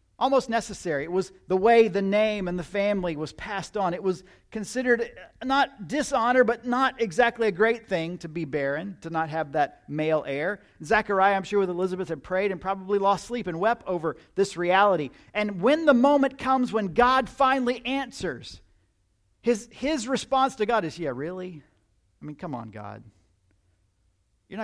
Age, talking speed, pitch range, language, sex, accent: 40-59, 180 wpm, 125-215 Hz, English, male, American